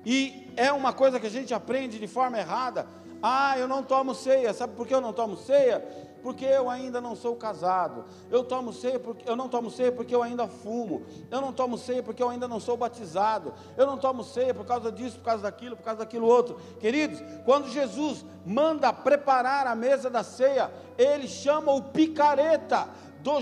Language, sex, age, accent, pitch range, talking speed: Portuguese, male, 50-69, Brazilian, 235-295 Hz, 200 wpm